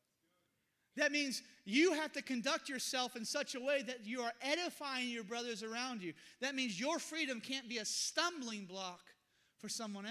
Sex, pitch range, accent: male, 195-245 Hz, American